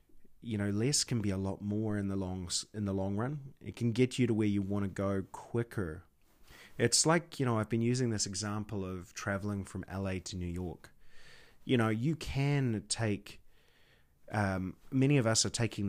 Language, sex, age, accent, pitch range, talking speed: English, male, 30-49, Australian, 100-120 Hz, 200 wpm